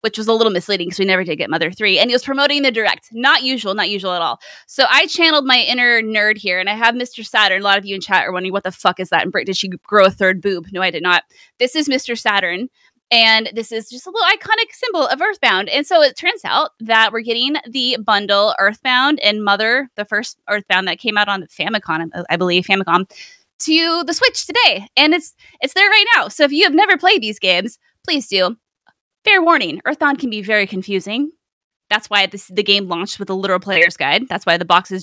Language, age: English, 20-39